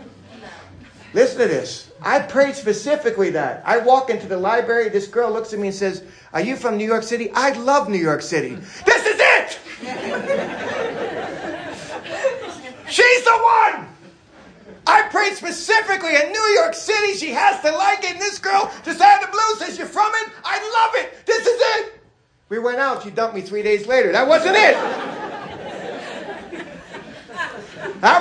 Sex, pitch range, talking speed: male, 215-335 Hz, 165 wpm